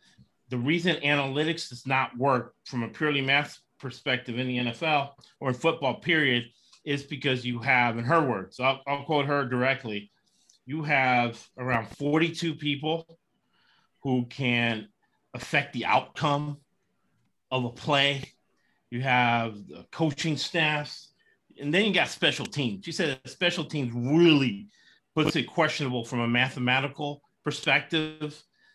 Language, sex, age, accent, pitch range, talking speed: English, male, 30-49, American, 130-185 Hz, 135 wpm